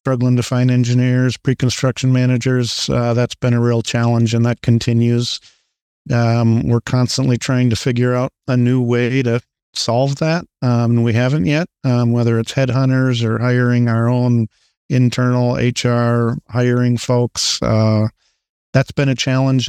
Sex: male